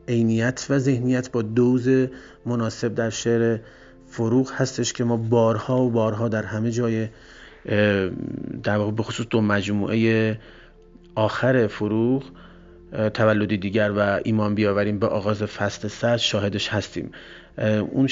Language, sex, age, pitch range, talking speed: Persian, male, 30-49, 105-125 Hz, 125 wpm